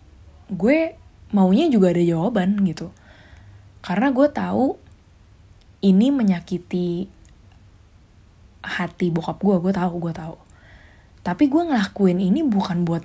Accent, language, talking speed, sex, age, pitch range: native, Indonesian, 110 wpm, female, 20-39, 165-200 Hz